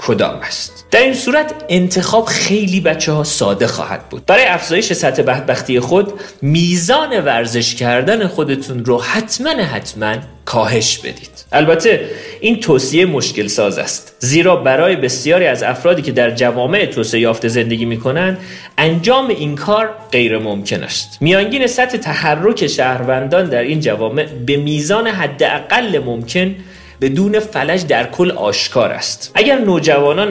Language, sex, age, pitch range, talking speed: Persian, male, 40-59, 125-200 Hz, 135 wpm